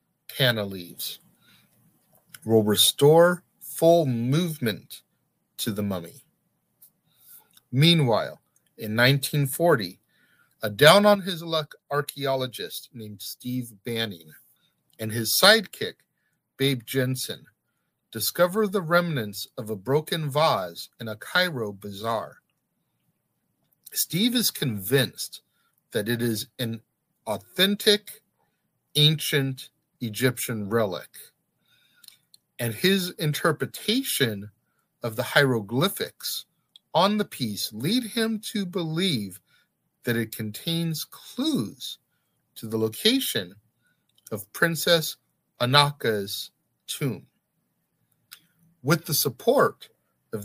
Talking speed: 85 wpm